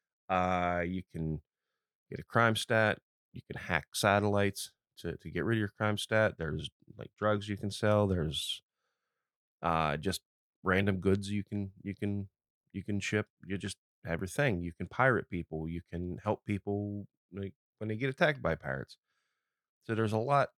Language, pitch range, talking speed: English, 85-105 Hz, 175 wpm